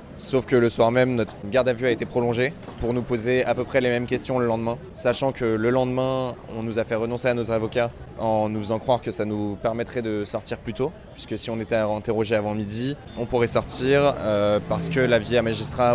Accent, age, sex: French, 20-39, male